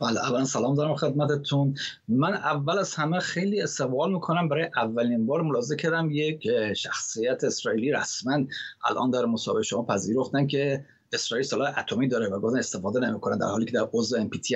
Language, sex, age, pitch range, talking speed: Persian, male, 30-49, 130-165 Hz, 175 wpm